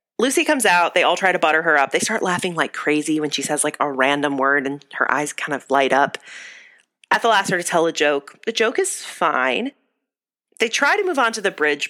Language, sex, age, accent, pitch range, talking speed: English, female, 30-49, American, 145-220 Hz, 240 wpm